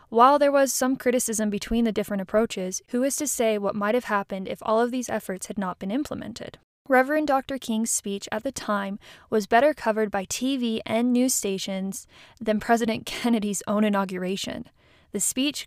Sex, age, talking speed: female, 20-39, 185 wpm